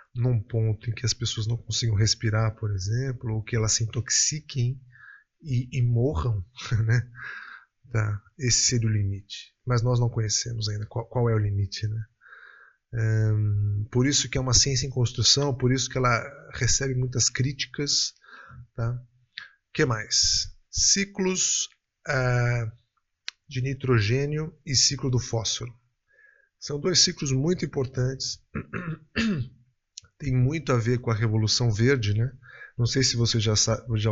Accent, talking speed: Brazilian, 150 wpm